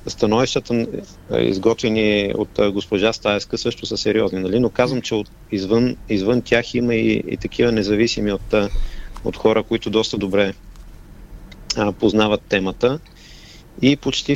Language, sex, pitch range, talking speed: Bulgarian, male, 100-120 Hz, 135 wpm